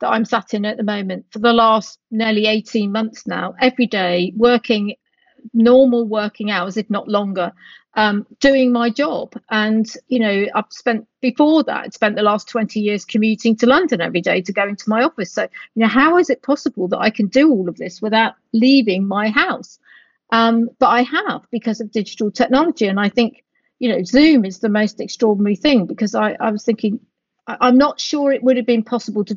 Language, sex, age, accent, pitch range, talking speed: English, female, 40-59, British, 205-245 Hz, 205 wpm